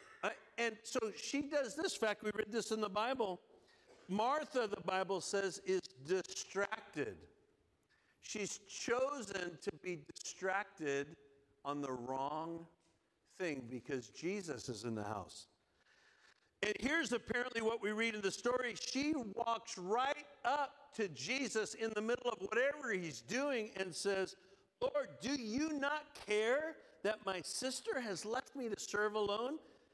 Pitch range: 145-240 Hz